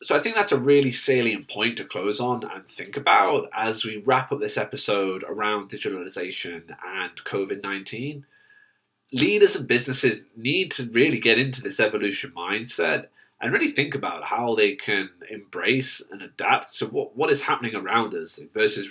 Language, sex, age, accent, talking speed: English, male, 30-49, British, 170 wpm